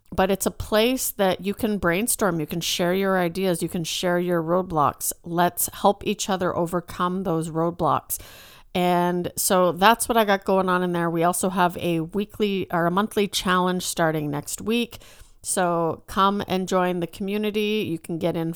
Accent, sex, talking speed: American, female, 185 wpm